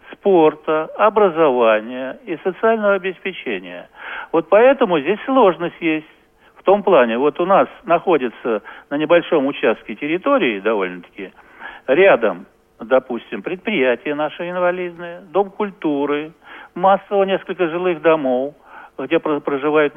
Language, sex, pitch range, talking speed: Russian, male, 135-185 Hz, 105 wpm